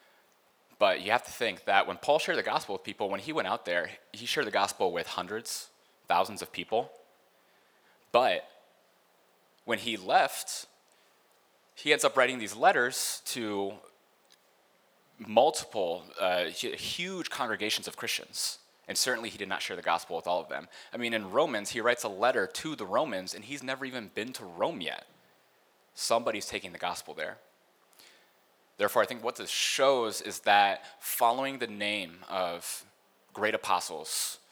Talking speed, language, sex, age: 165 wpm, English, male, 20-39